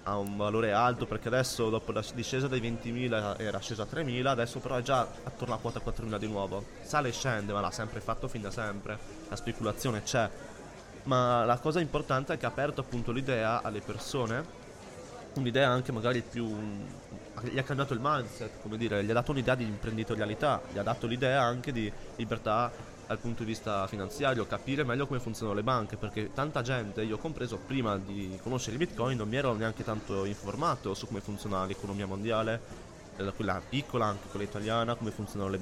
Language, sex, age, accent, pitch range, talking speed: Italian, male, 20-39, native, 105-125 Hz, 190 wpm